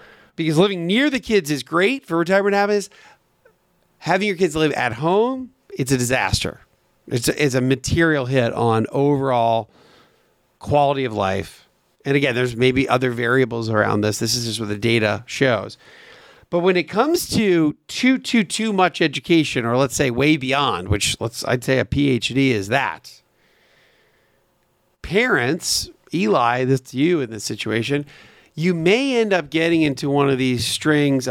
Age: 40-59